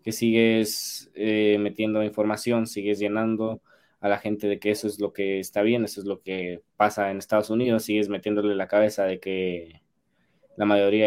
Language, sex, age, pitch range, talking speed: Spanish, male, 20-39, 100-110 Hz, 185 wpm